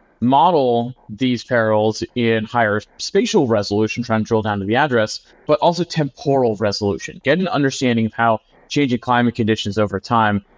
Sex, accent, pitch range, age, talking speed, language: male, American, 110-135 Hz, 30-49, 160 wpm, English